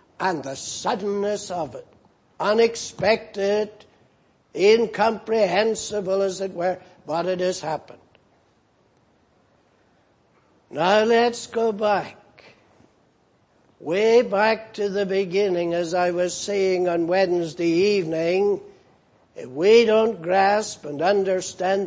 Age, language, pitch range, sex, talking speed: 60-79, English, 175-210 Hz, male, 100 wpm